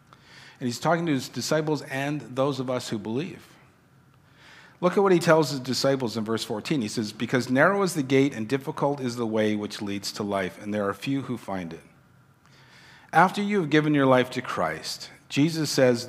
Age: 50-69